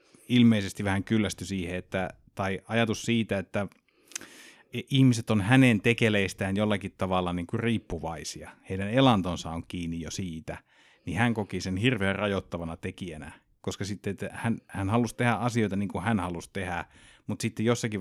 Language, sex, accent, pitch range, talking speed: Finnish, male, native, 85-110 Hz, 155 wpm